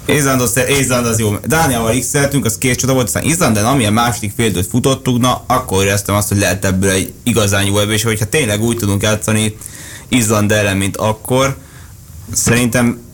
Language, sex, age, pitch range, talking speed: Hungarian, male, 20-39, 95-115 Hz, 165 wpm